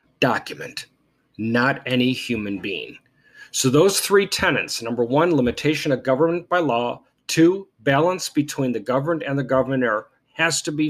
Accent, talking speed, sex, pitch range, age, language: American, 150 wpm, male, 130-170 Hz, 40-59, English